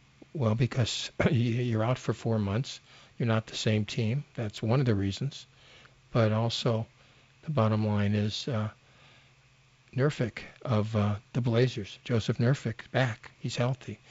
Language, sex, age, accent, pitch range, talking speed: English, male, 50-69, American, 110-130 Hz, 145 wpm